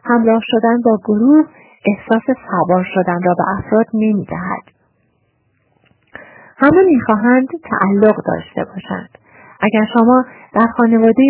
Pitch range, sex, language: 200-245 Hz, female, Persian